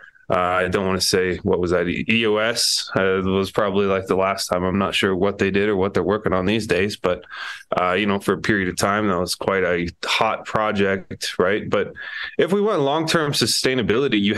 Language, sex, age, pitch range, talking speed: English, male, 20-39, 95-110 Hz, 225 wpm